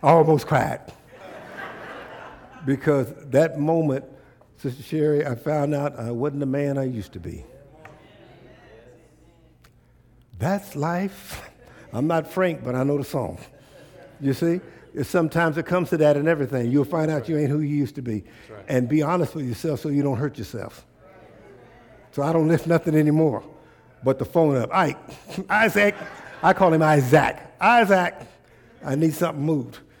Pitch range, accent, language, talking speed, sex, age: 130-160 Hz, American, English, 160 wpm, male, 60-79